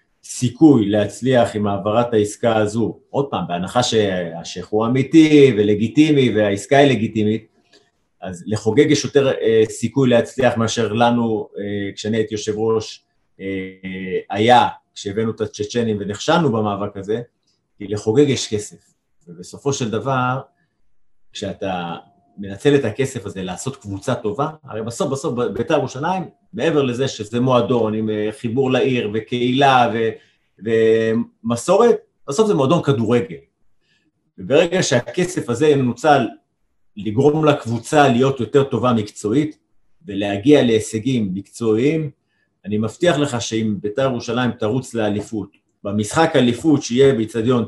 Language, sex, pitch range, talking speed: Hebrew, male, 105-140 Hz, 120 wpm